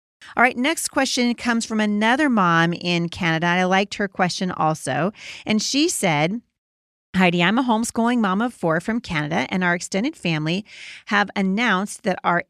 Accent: American